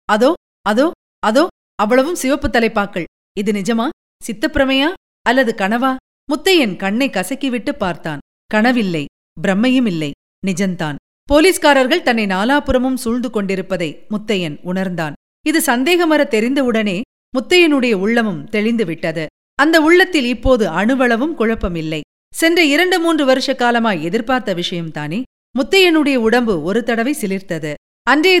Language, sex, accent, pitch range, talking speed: Tamil, female, native, 195-285 Hz, 105 wpm